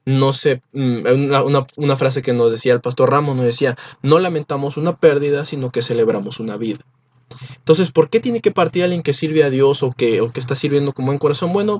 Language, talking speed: Spanish, 215 wpm